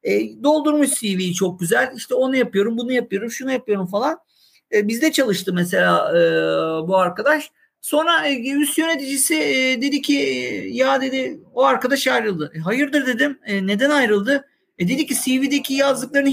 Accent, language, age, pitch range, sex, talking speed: native, Turkish, 50-69, 195-275 Hz, male, 160 wpm